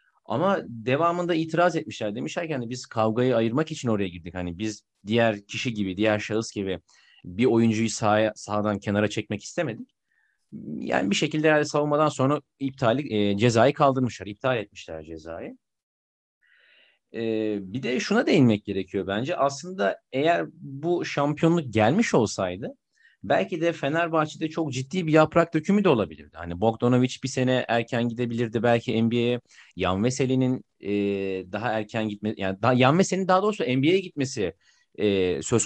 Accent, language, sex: native, Turkish, male